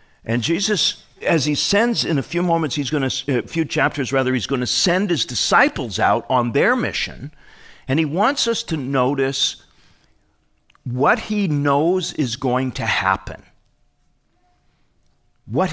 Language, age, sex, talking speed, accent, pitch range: English, 50-69, male, 155 wpm, American, 125-175 Hz